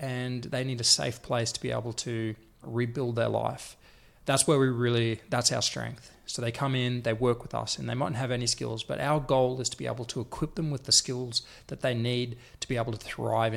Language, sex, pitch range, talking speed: English, male, 115-135 Hz, 250 wpm